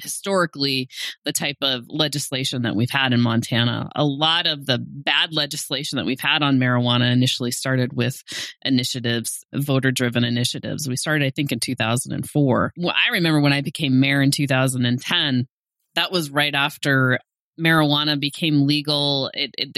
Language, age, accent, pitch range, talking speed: English, 30-49, American, 125-145 Hz, 155 wpm